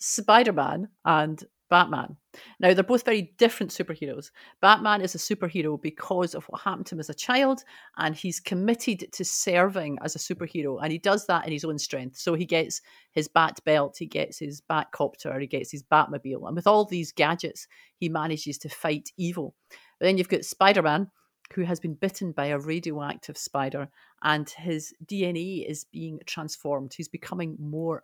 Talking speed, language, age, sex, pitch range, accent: 175 wpm, English, 40-59, female, 150-185 Hz, British